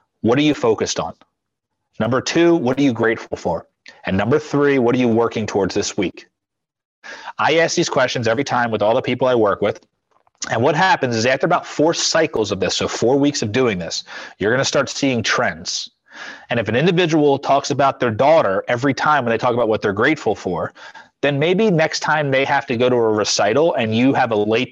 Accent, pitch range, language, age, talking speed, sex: American, 115-150 Hz, English, 30-49, 220 wpm, male